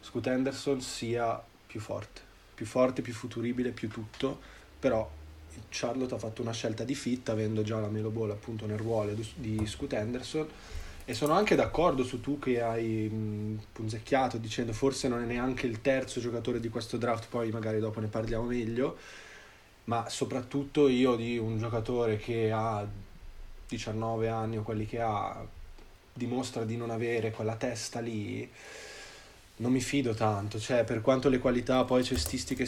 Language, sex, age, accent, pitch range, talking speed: Italian, male, 20-39, native, 110-125 Hz, 160 wpm